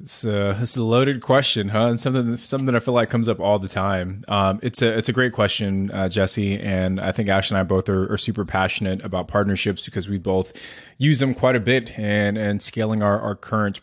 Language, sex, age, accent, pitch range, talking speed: English, male, 20-39, American, 95-115 Hz, 240 wpm